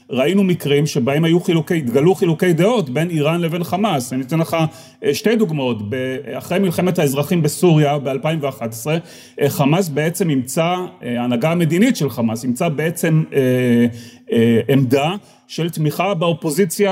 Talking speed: 130 wpm